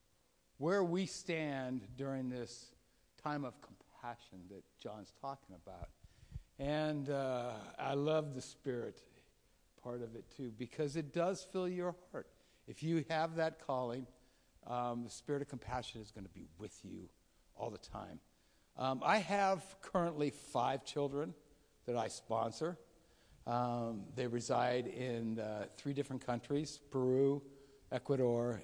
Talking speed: 135 wpm